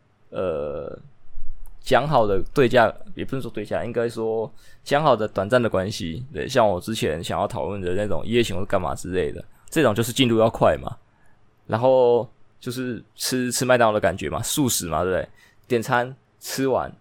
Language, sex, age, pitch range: Chinese, male, 20-39, 105-130 Hz